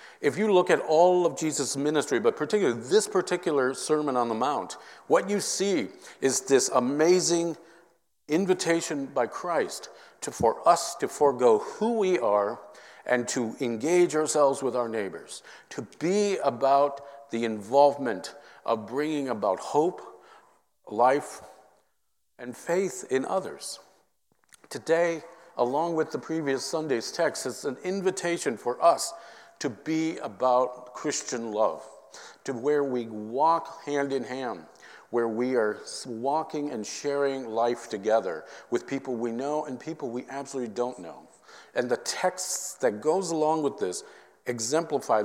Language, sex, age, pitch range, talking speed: English, male, 50-69, 130-175 Hz, 140 wpm